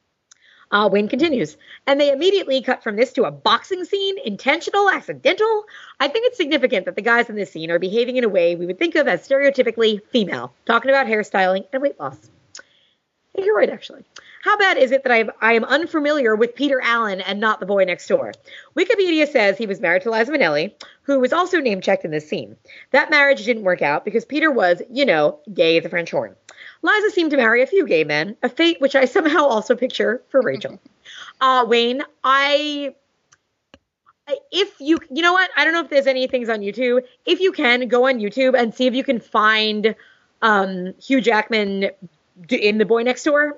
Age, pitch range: 30-49, 215-290 Hz